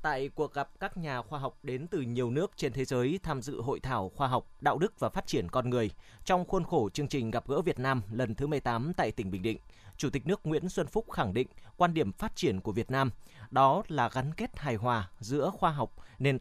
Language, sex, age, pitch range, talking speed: Vietnamese, male, 20-39, 120-160 Hz, 250 wpm